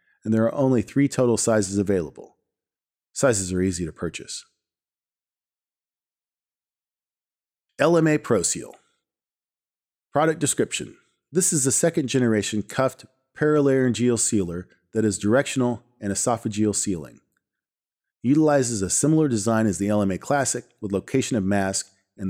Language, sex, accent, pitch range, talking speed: English, male, American, 100-125 Hz, 120 wpm